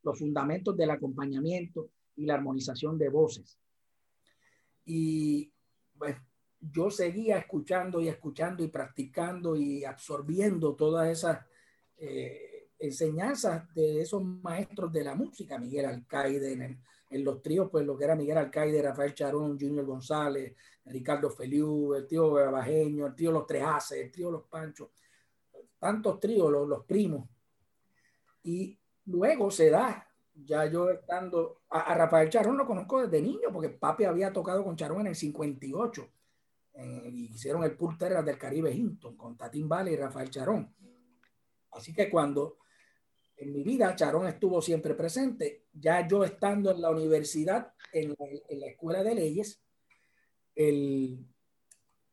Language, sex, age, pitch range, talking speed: Spanish, male, 50-69, 145-180 Hz, 145 wpm